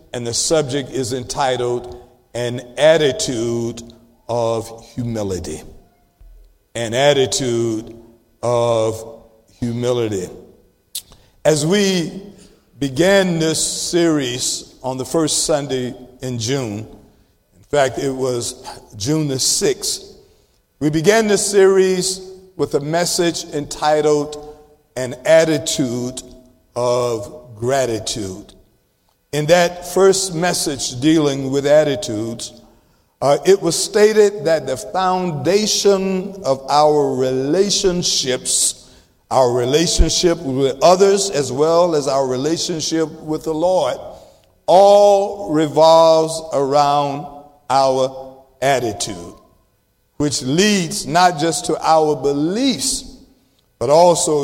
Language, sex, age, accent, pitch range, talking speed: English, male, 50-69, American, 125-170 Hz, 95 wpm